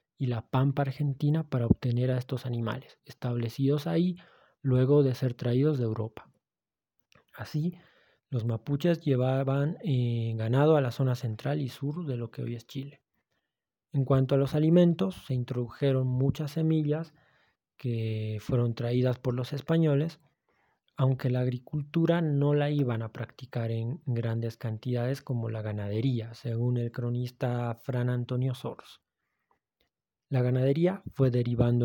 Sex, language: male, Spanish